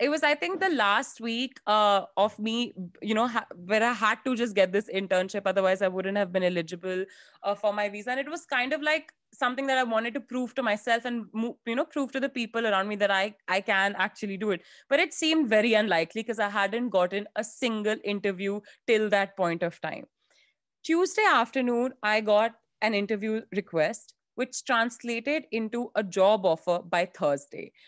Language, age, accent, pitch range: English, 20-39, Indian, 200-265 Hz